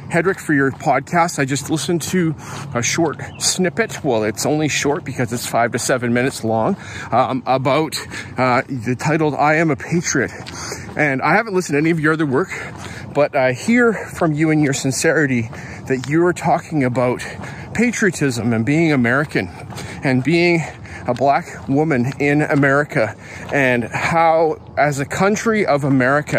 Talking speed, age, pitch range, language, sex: 160 wpm, 40-59, 125-160 Hz, English, male